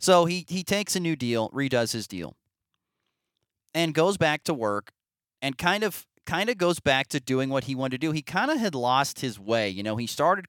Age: 30-49